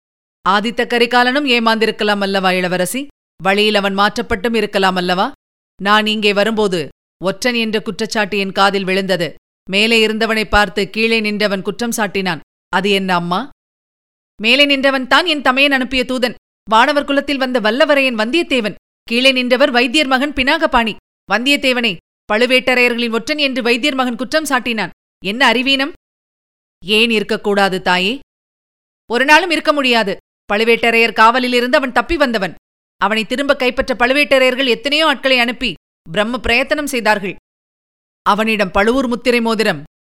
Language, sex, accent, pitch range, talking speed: Tamil, female, native, 200-255 Hz, 120 wpm